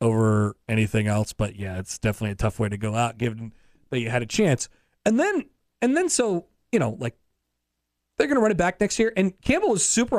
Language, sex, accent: English, male, American